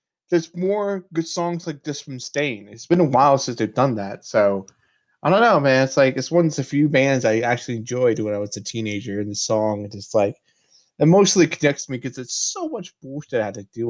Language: English